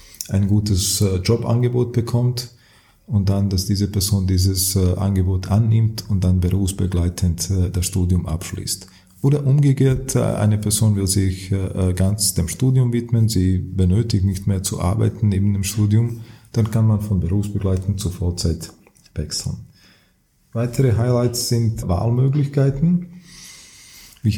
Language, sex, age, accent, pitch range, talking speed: German, male, 40-59, Austrian, 95-110 Hz, 125 wpm